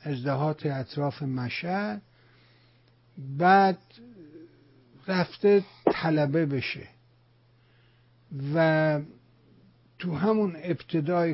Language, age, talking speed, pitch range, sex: Persian, 60-79, 60 wpm, 125-170 Hz, male